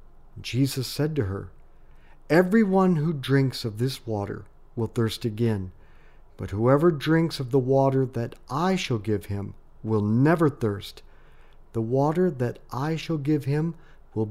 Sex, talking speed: male, 145 wpm